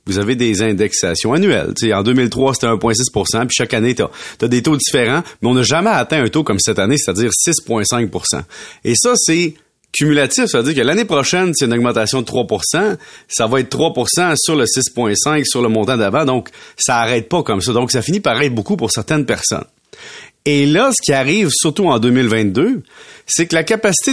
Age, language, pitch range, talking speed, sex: 30-49, French, 110-150 Hz, 200 wpm, male